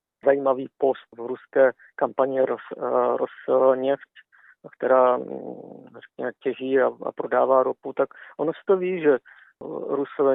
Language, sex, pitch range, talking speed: Czech, male, 130-140 Hz, 115 wpm